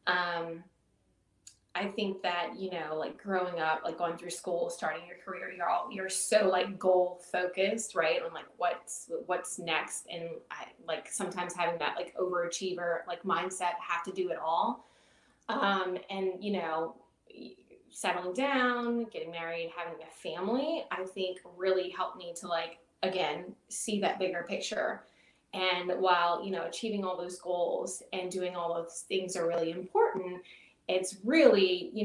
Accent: American